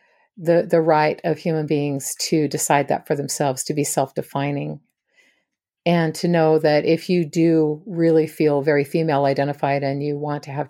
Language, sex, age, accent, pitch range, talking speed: English, female, 50-69, American, 140-165 Hz, 175 wpm